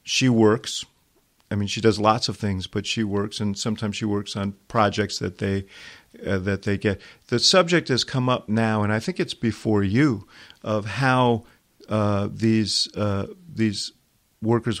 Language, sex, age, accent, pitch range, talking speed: English, male, 50-69, American, 100-120 Hz, 175 wpm